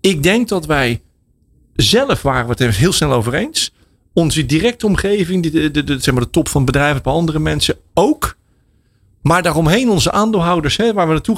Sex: male